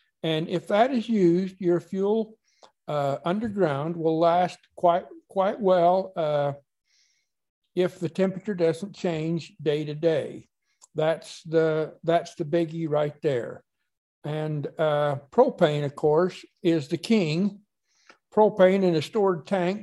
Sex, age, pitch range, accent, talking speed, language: male, 60-79, 165-195 Hz, American, 130 wpm, English